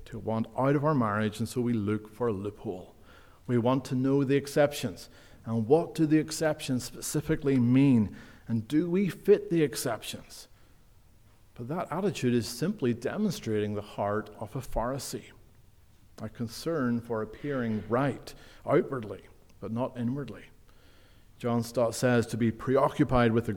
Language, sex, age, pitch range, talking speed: English, male, 50-69, 110-135 Hz, 155 wpm